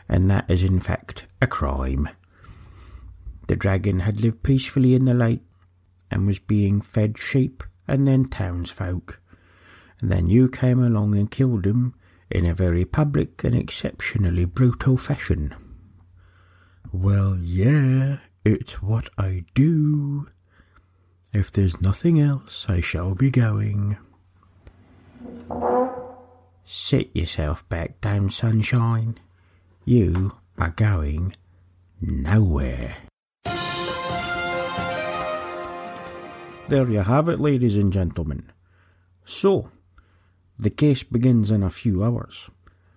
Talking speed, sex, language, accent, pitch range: 110 wpm, male, English, British, 90-115 Hz